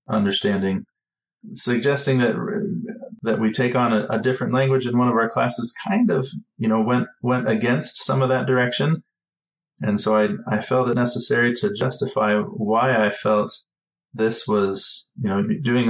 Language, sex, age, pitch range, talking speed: English, male, 20-39, 105-140 Hz, 165 wpm